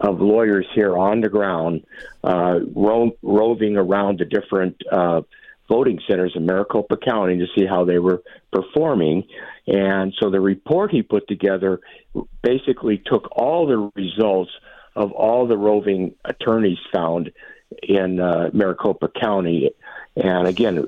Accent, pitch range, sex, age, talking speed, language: American, 95-110 Hz, male, 50-69, 140 wpm, English